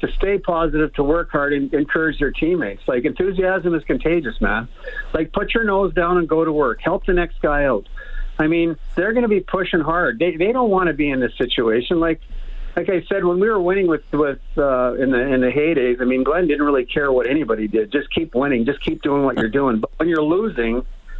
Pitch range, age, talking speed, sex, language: 140-185 Hz, 50-69, 240 wpm, male, English